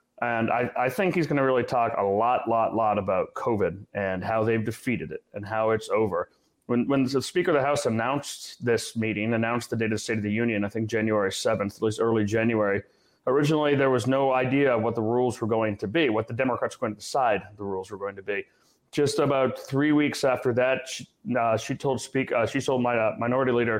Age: 30-49